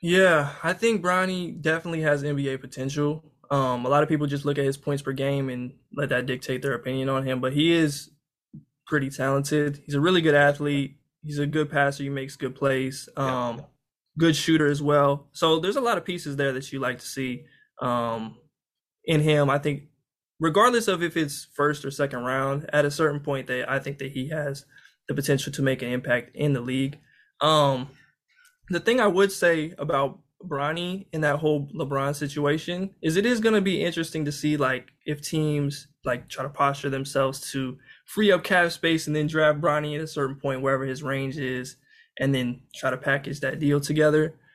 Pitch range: 135-160 Hz